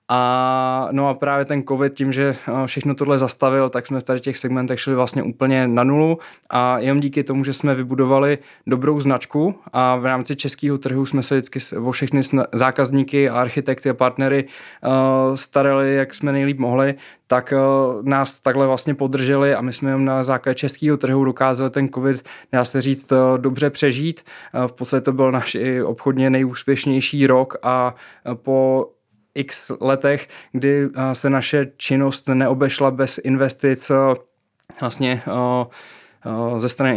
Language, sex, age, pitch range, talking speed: Czech, male, 20-39, 125-140 Hz, 155 wpm